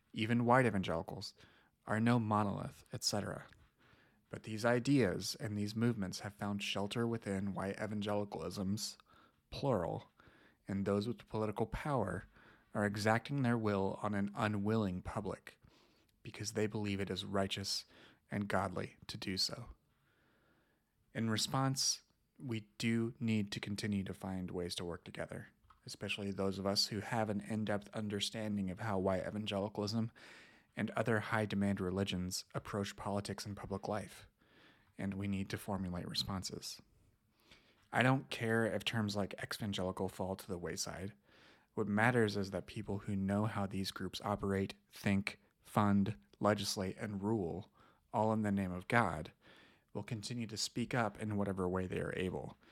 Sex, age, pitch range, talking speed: male, 30-49, 100-110 Hz, 145 wpm